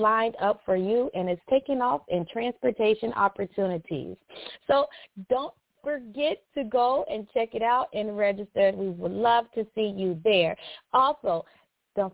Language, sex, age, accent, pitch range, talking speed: English, female, 30-49, American, 215-285 Hz, 155 wpm